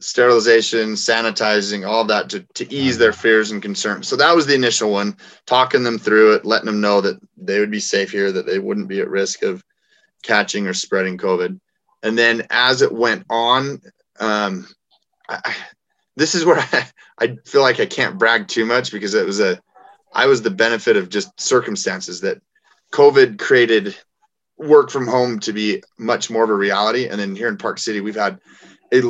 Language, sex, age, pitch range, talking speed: English, male, 30-49, 100-125 Hz, 190 wpm